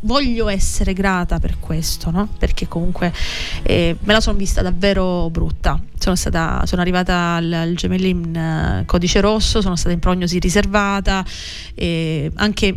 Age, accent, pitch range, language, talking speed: 30-49, native, 170-215 Hz, Italian, 150 wpm